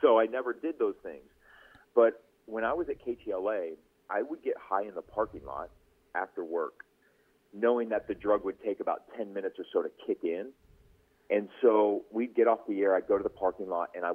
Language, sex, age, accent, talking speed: English, male, 40-59, American, 215 wpm